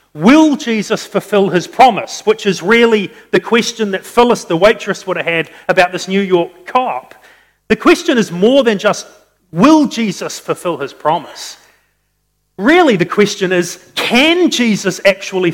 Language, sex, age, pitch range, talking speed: English, male, 40-59, 175-225 Hz, 155 wpm